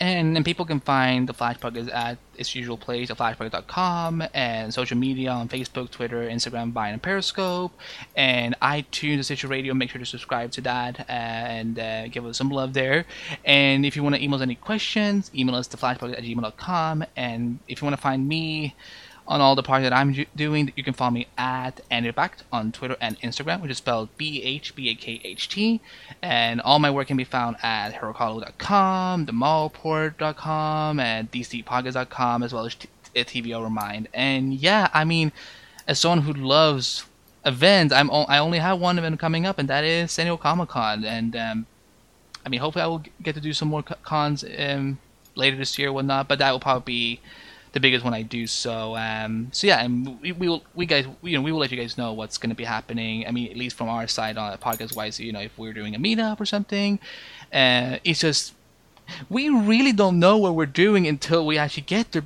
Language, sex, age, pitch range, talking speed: English, male, 20-39, 120-155 Hz, 210 wpm